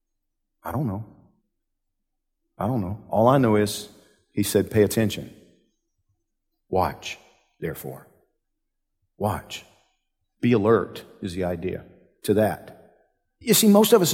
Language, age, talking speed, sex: English, 50-69, 125 wpm, male